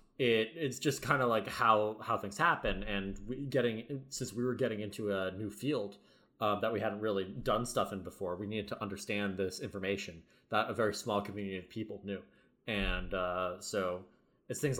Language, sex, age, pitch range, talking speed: English, male, 20-39, 95-115 Hz, 200 wpm